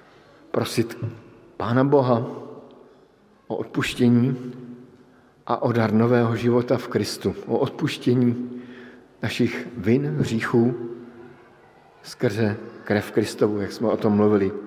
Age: 50-69